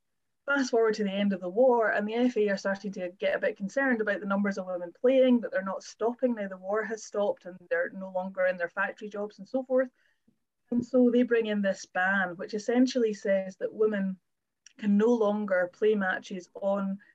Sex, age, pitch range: female, 20-39, 190-235 Hz